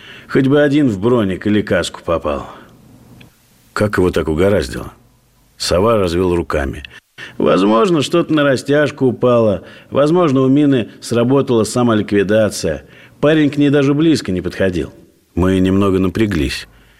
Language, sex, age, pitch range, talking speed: Russian, male, 50-69, 95-130 Hz, 125 wpm